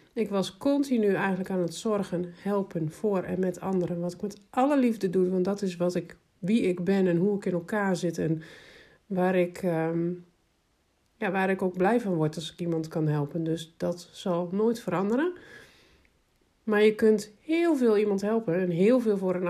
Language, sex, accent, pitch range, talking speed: Dutch, male, Dutch, 175-210 Hz, 200 wpm